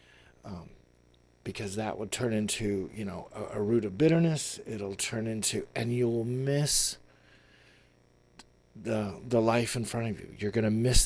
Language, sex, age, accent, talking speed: English, male, 50-69, American, 165 wpm